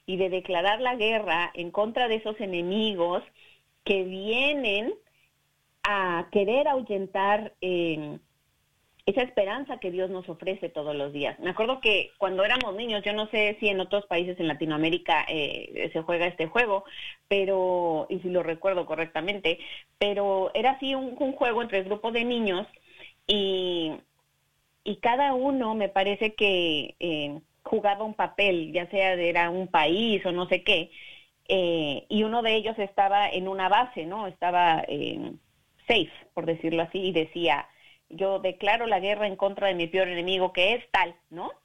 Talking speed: 165 wpm